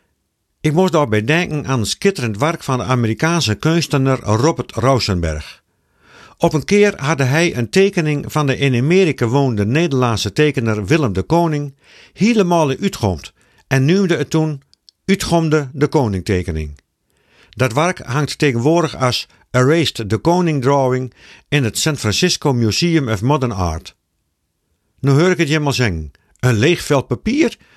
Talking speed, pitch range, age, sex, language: 150 wpm, 110-165 Hz, 50-69, male, Dutch